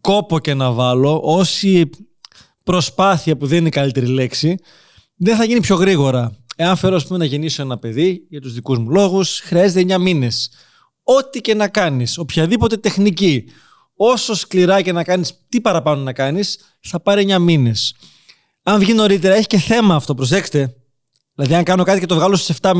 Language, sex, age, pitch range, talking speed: Greek, male, 20-39, 150-195 Hz, 180 wpm